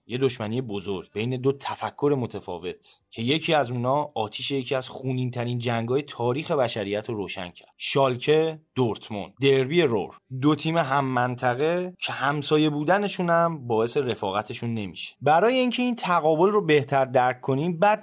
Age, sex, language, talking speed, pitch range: 30-49, male, Persian, 155 wpm, 125-165 Hz